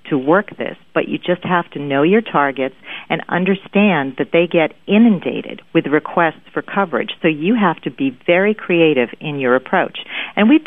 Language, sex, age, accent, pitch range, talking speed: English, female, 40-59, American, 145-185 Hz, 185 wpm